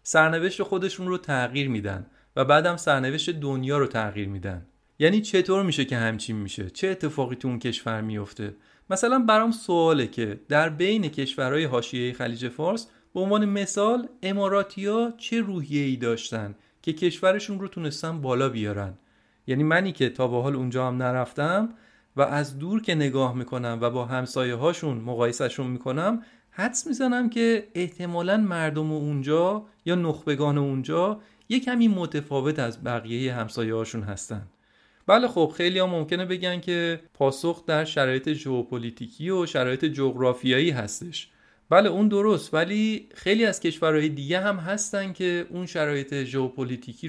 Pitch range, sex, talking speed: 125-185 Hz, male, 150 wpm